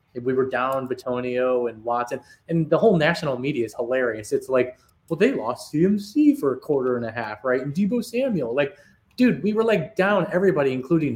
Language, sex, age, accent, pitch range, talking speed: English, male, 20-39, American, 125-170 Hz, 200 wpm